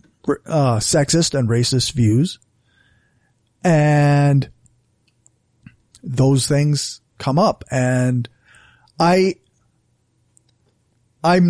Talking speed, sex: 70 wpm, male